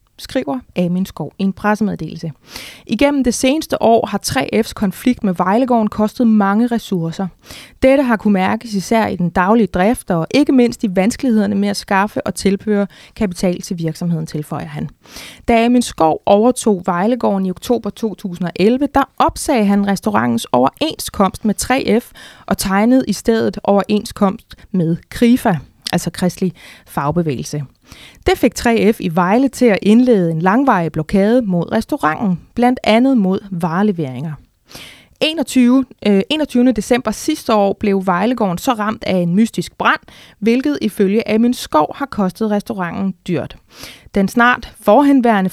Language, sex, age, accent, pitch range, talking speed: Danish, female, 20-39, native, 185-240 Hz, 145 wpm